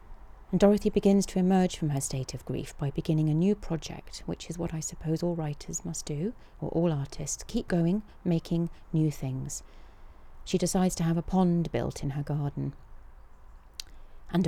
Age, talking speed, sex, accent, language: 40-59, 180 wpm, female, British, English